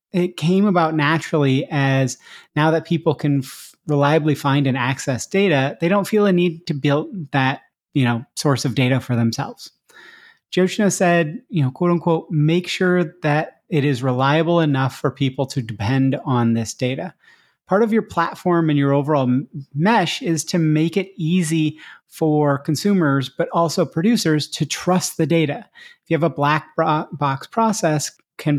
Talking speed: 170 wpm